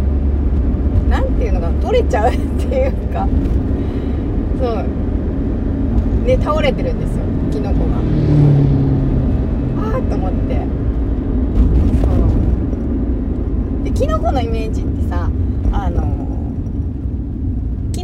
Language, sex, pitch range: Japanese, female, 75-90 Hz